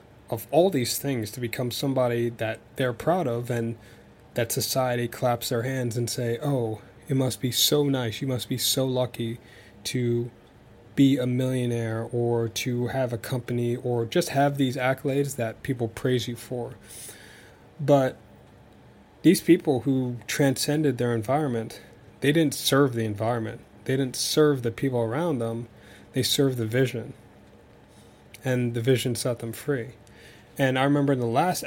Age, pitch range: 20-39, 115-135 Hz